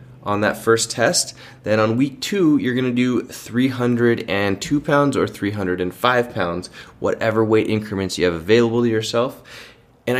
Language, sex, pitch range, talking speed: English, male, 95-115 Hz, 145 wpm